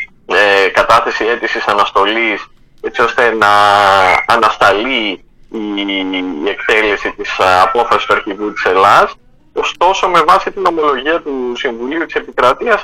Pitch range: 135-200 Hz